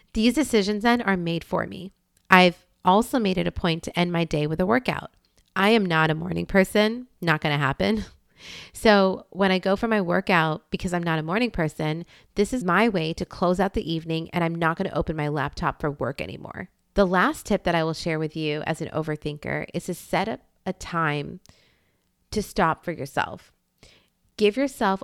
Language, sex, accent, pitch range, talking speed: English, female, American, 160-195 Hz, 205 wpm